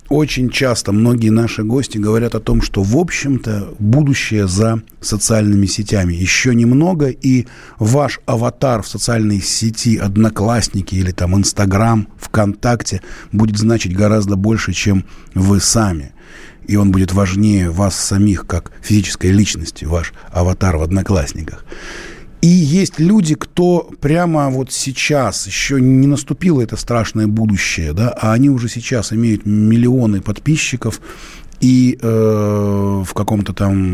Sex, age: male, 20-39